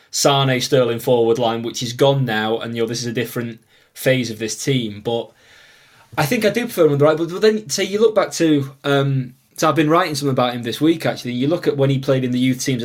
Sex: male